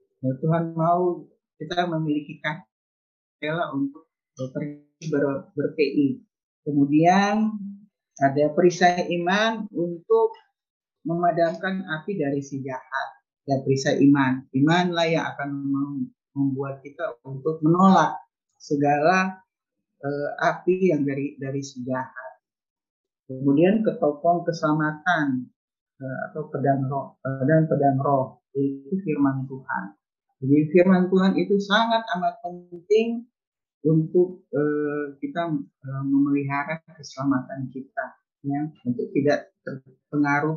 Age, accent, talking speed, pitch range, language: 50-69, native, 100 wpm, 140-180 Hz, Indonesian